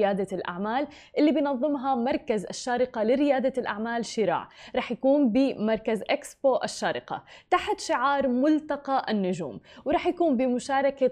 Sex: female